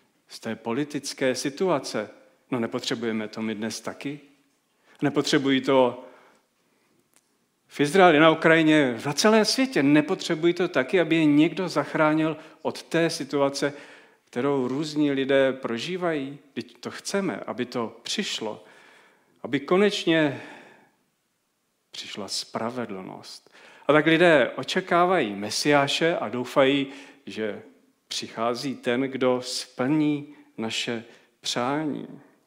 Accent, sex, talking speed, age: native, male, 105 wpm, 40-59